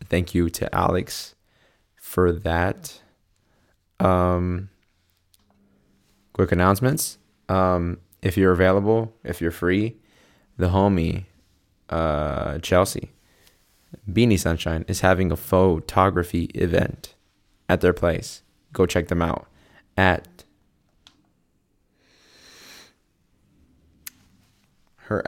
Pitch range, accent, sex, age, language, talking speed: 90-100 Hz, American, male, 20-39, English, 85 wpm